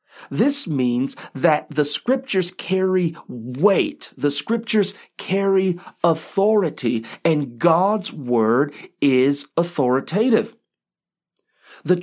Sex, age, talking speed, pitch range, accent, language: male, 40-59, 85 wpm, 145-205 Hz, American, English